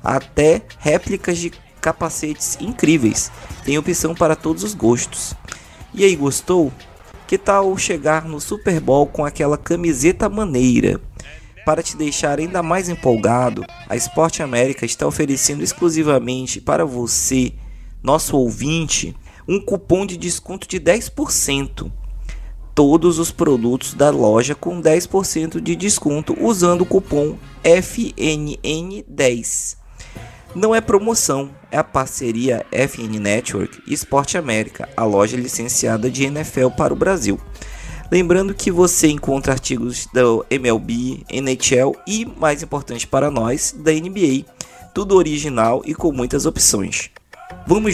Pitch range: 125-170 Hz